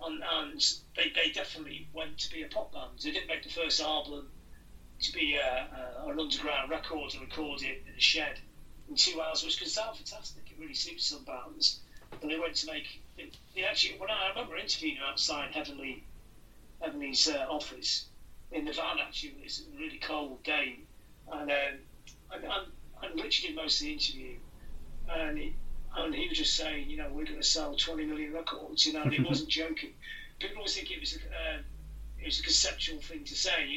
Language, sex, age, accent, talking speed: English, male, 40-59, British, 200 wpm